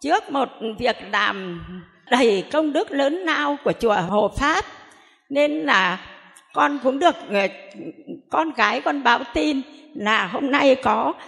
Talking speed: 150 wpm